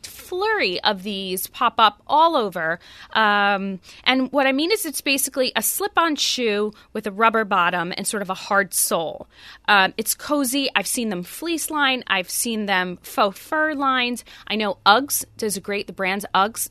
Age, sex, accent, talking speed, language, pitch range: 20-39, female, American, 185 wpm, English, 190-255 Hz